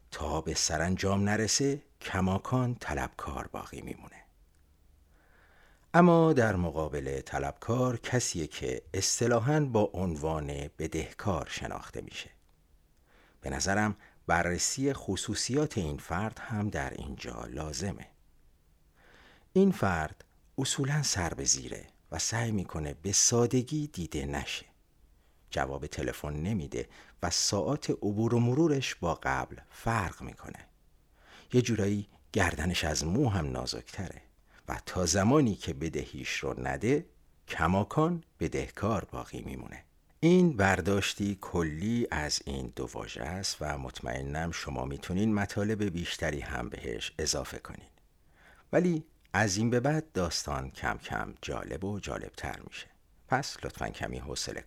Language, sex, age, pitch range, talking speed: Persian, male, 50-69, 75-110 Hz, 120 wpm